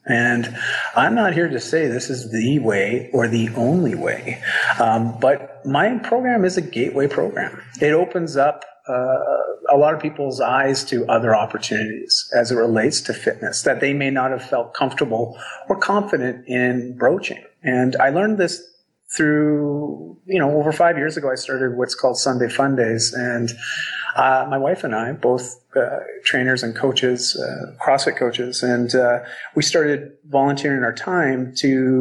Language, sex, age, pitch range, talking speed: English, male, 40-59, 125-170 Hz, 165 wpm